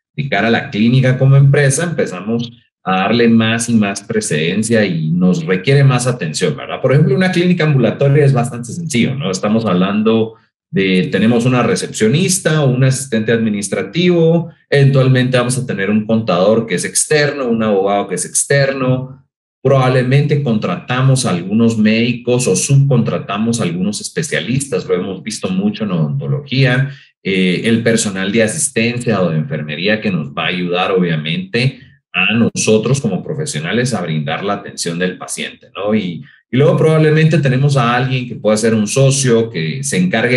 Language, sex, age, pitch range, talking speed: Spanish, male, 30-49, 110-145 Hz, 155 wpm